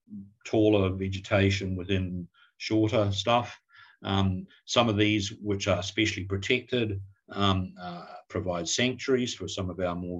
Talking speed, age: 130 wpm, 50-69